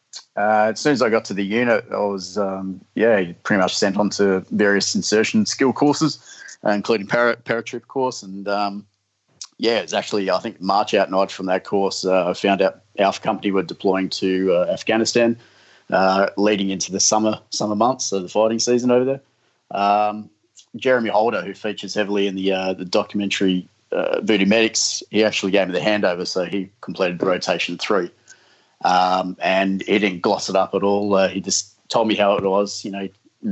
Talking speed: 195 wpm